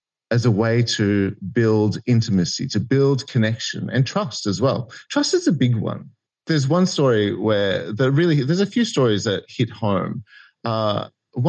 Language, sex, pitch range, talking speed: English, male, 105-140 Hz, 165 wpm